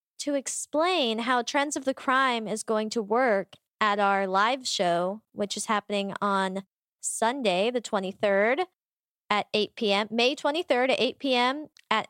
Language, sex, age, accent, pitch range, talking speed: English, female, 20-39, American, 200-255 Hz, 155 wpm